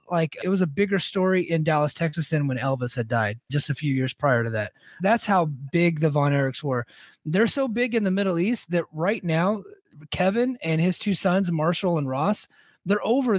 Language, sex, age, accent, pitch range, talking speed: English, male, 30-49, American, 150-195 Hz, 215 wpm